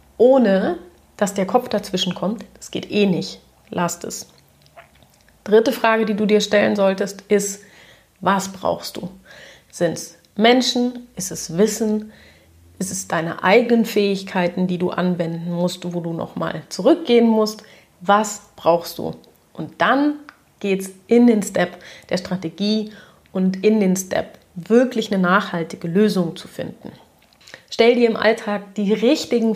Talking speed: 145 wpm